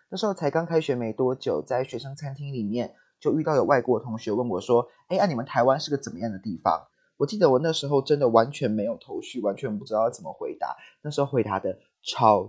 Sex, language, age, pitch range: male, Chinese, 20-39, 120-160 Hz